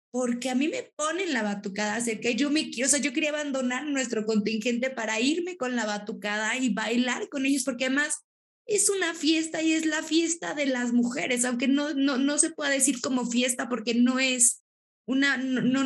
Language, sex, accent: Spanish, female, Mexican